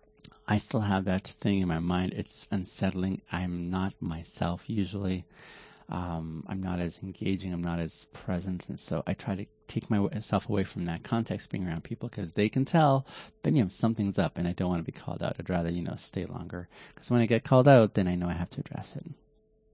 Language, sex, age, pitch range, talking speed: English, male, 30-49, 90-120 Hz, 225 wpm